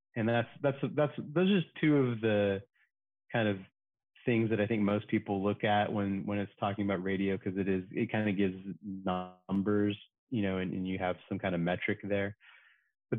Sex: male